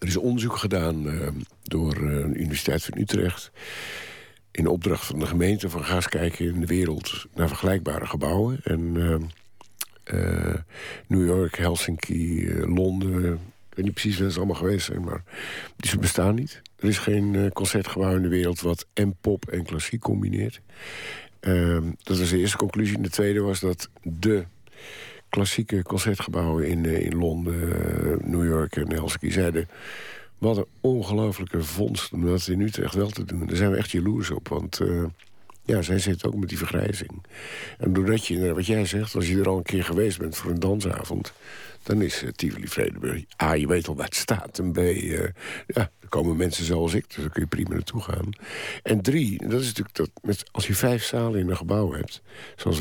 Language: Dutch